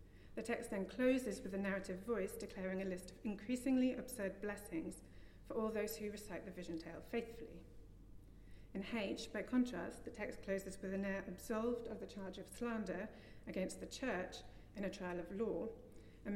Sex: female